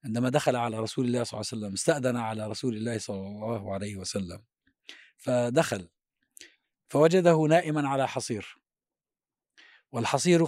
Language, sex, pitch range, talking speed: Arabic, male, 115-150 Hz, 130 wpm